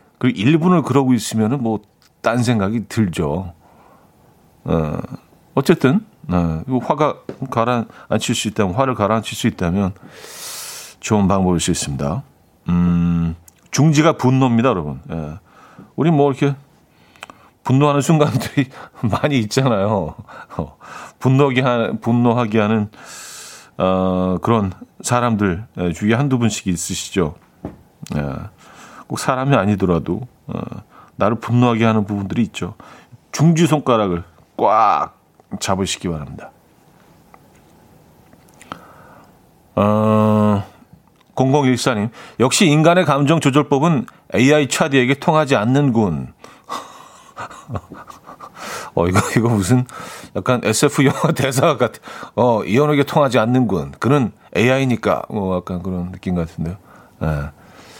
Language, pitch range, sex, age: Korean, 95-135 Hz, male, 40-59